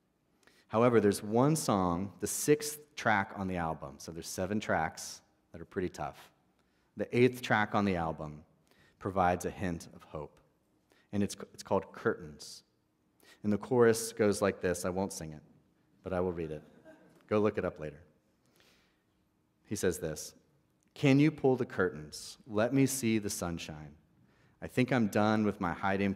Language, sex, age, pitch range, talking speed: English, male, 30-49, 80-110 Hz, 170 wpm